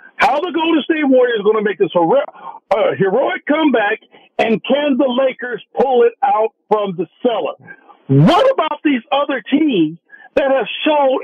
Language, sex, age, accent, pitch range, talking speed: English, male, 50-69, American, 215-310 Hz, 170 wpm